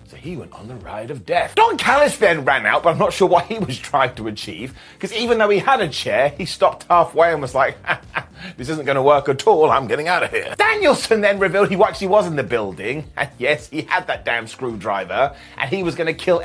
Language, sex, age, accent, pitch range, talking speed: English, male, 30-49, British, 160-225 Hz, 255 wpm